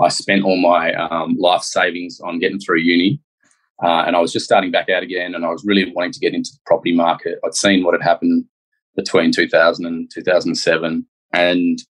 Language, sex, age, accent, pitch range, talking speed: English, male, 20-39, Australian, 90-145 Hz, 200 wpm